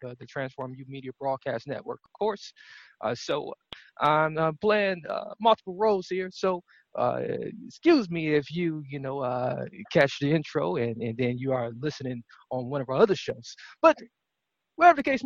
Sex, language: male, English